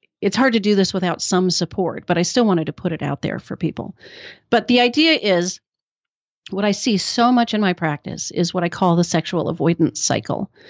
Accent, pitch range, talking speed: American, 180-230 Hz, 220 wpm